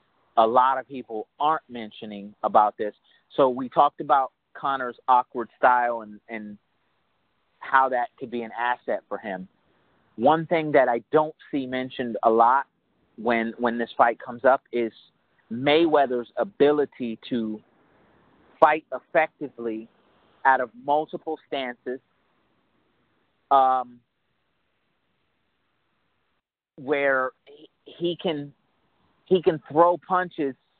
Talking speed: 115 wpm